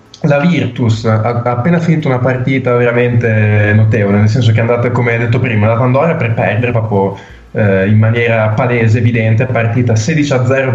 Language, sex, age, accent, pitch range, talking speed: Italian, male, 20-39, native, 110-130 Hz, 170 wpm